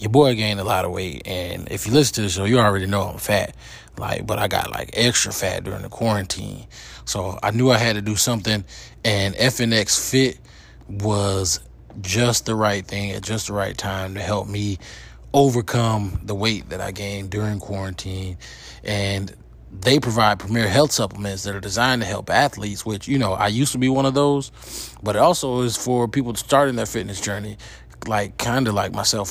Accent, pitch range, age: American, 100-120 Hz, 20-39